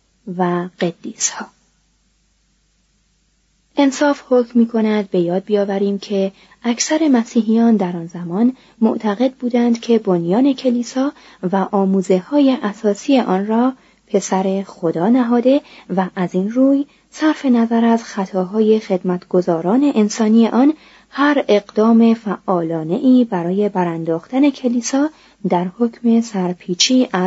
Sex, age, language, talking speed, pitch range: female, 30-49, Persian, 110 wpm, 185-240 Hz